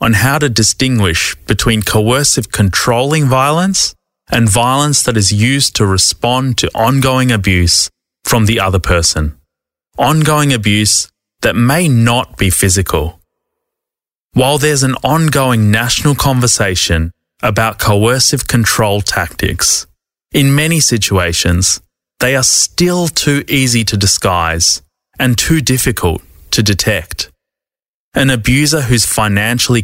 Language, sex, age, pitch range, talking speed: English, male, 20-39, 95-130 Hz, 115 wpm